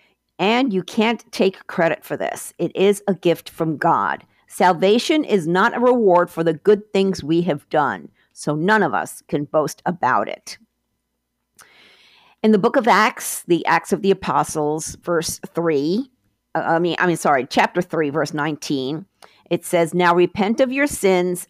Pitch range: 165-215 Hz